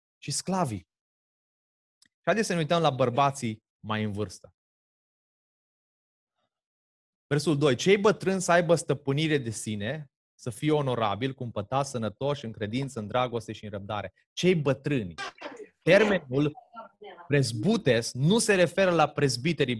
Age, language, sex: 20-39, Romanian, male